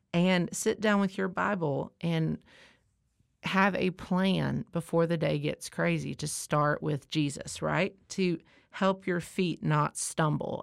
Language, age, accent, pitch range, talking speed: English, 40-59, American, 155-190 Hz, 145 wpm